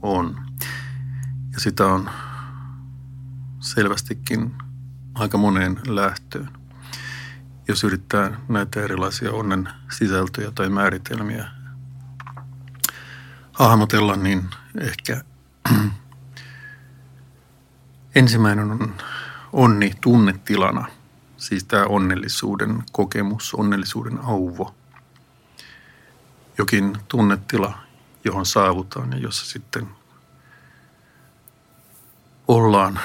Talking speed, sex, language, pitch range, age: 65 wpm, male, Finnish, 100-130 Hz, 50-69